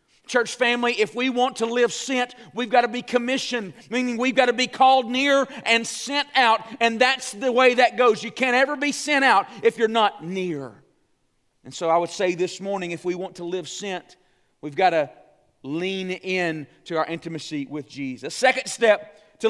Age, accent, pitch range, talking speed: 40-59, American, 200-250 Hz, 200 wpm